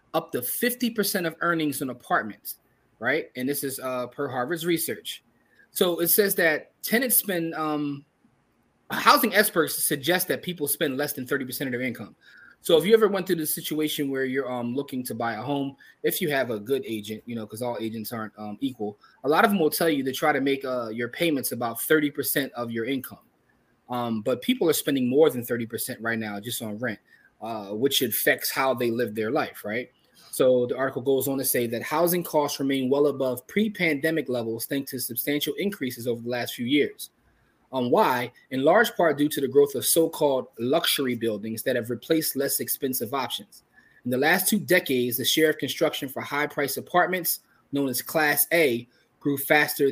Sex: male